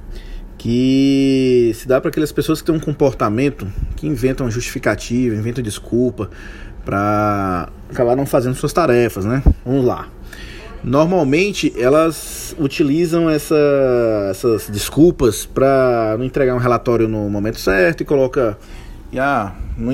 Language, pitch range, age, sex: Portuguese, 115-155 Hz, 20-39, male